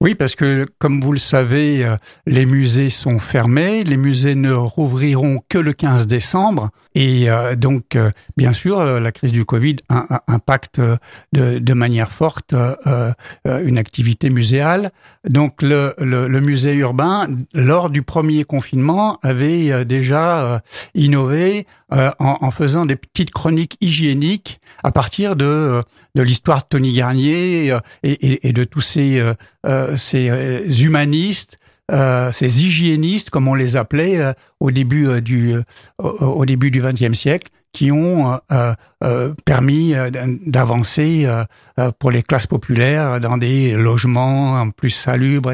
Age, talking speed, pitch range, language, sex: 60-79, 130 wpm, 125-150 Hz, French, male